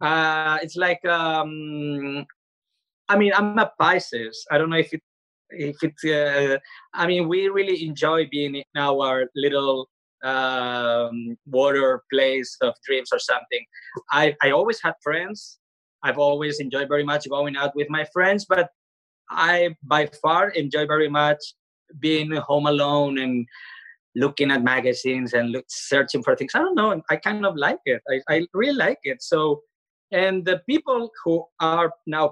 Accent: Spanish